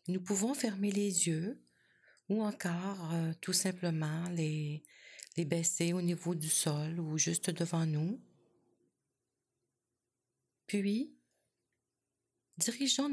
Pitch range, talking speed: 165-210 Hz, 105 wpm